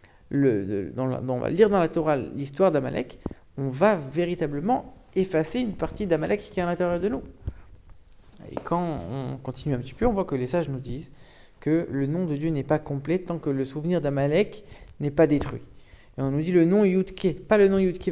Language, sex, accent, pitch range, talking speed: English, male, French, 135-185 Hz, 215 wpm